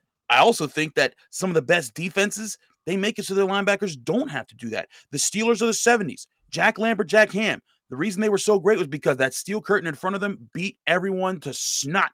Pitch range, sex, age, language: 135-195 Hz, male, 30-49, English